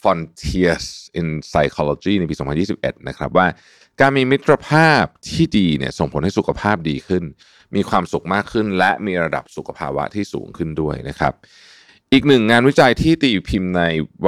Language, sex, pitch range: Thai, male, 80-110 Hz